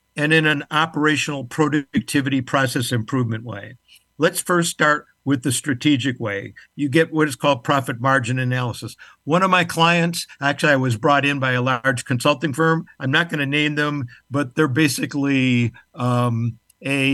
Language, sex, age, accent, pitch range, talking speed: English, male, 60-79, American, 130-170 Hz, 170 wpm